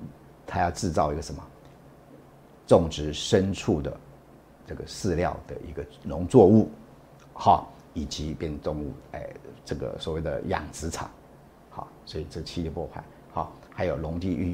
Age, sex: 50-69, male